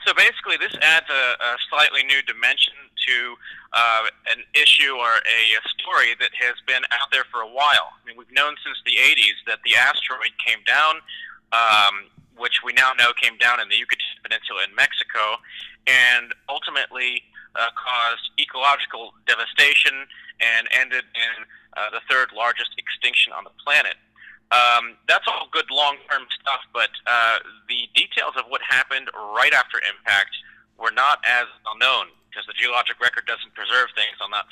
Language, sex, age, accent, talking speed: English, male, 30-49, American, 170 wpm